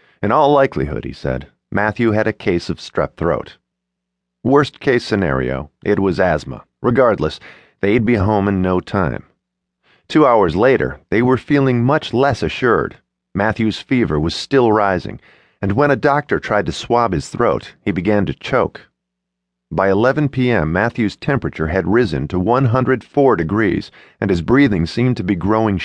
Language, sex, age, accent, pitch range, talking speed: English, male, 40-59, American, 80-130 Hz, 160 wpm